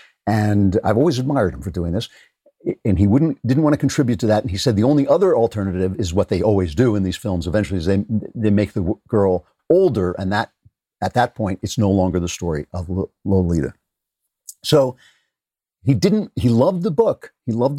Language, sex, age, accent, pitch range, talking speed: English, male, 50-69, American, 95-125 Hz, 205 wpm